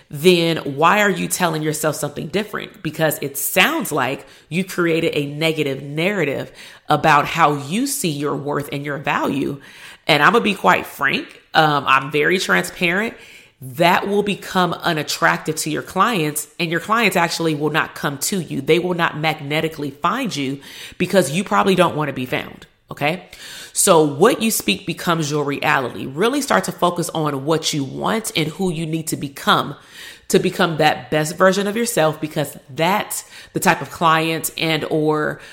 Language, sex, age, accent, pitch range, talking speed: English, female, 30-49, American, 150-180 Hz, 170 wpm